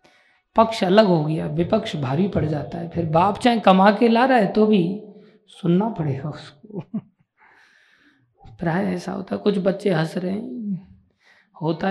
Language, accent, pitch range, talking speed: Hindi, native, 170-225 Hz, 135 wpm